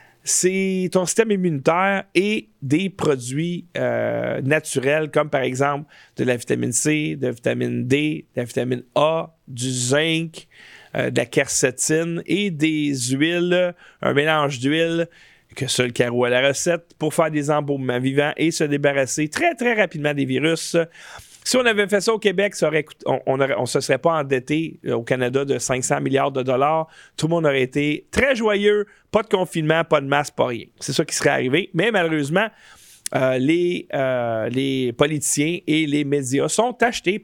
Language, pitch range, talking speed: French, 140-185 Hz, 175 wpm